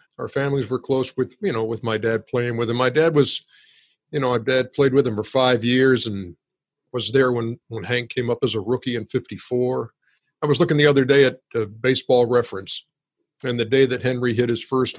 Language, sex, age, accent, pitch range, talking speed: English, male, 50-69, American, 110-135 Hz, 230 wpm